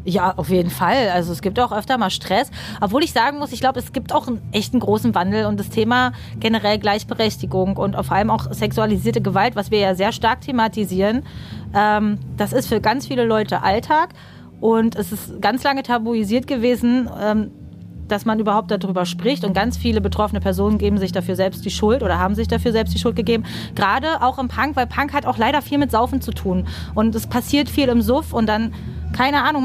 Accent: German